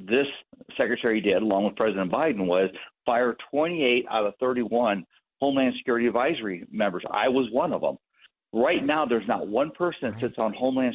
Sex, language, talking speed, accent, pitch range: male, English, 175 wpm, American, 115-140 Hz